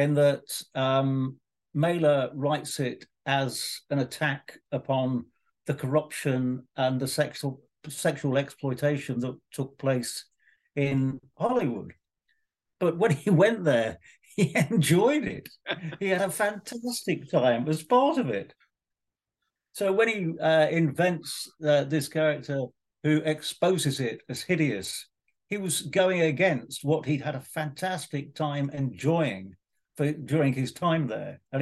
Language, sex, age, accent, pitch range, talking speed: English, male, 50-69, British, 135-160 Hz, 130 wpm